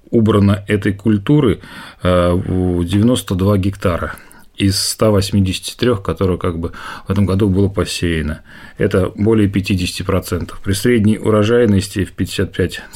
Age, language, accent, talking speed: 30-49, Russian, native, 95 wpm